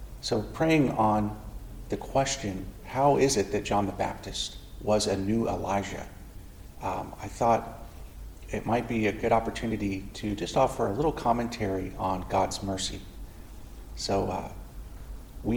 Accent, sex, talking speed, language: American, male, 145 wpm, English